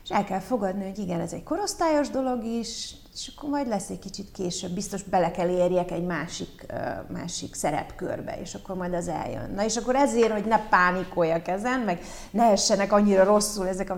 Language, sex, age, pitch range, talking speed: Hungarian, female, 30-49, 180-215 Hz, 200 wpm